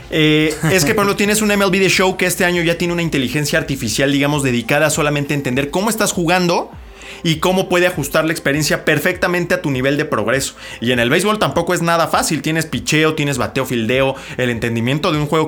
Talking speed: 215 wpm